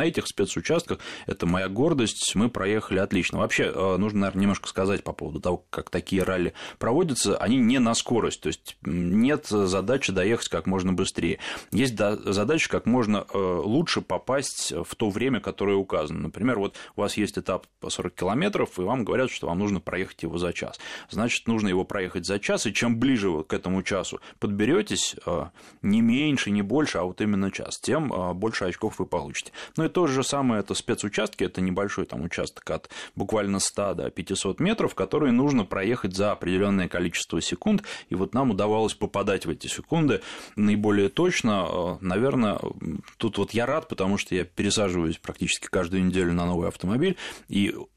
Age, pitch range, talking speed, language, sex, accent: 30-49, 95-110 Hz, 175 wpm, Russian, male, native